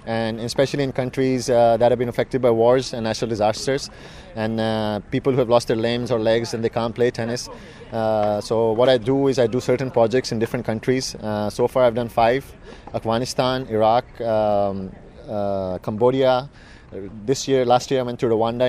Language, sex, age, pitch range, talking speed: English, male, 20-39, 115-130 Hz, 195 wpm